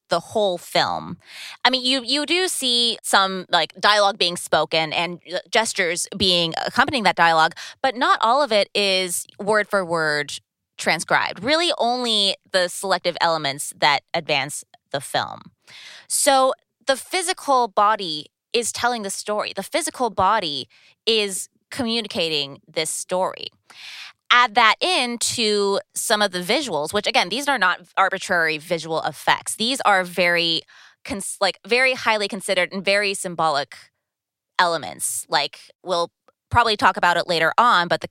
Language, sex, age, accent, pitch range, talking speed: English, female, 20-39, American, 165-225 Hz, 145 wpm